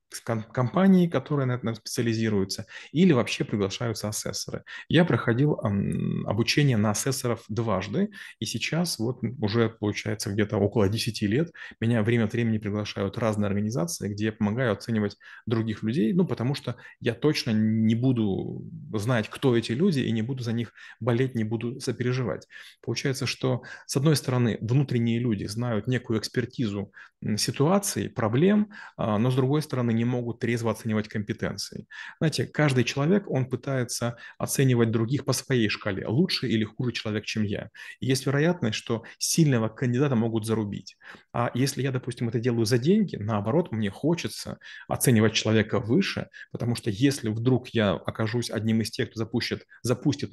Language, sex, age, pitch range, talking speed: Russian, male, 30-49, 110-130 Hz, 155 wpm